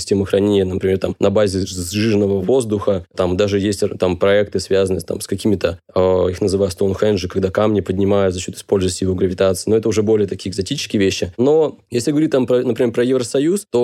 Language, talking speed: Russian, 195 wpm